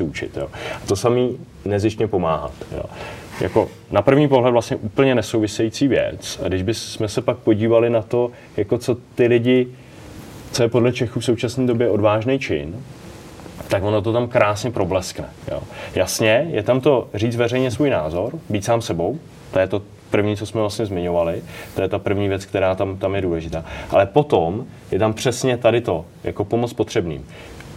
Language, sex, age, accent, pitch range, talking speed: Czech, male, 30-49, native, 100-120 Hz, 180 wpm